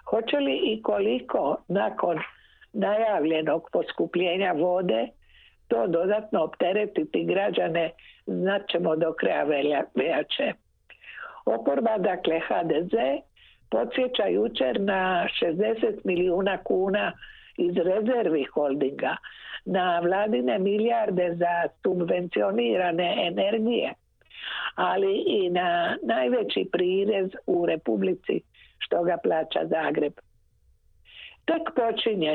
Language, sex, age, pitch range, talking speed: Croatian, female, 60-79, 170-225 Hz, 90 wpm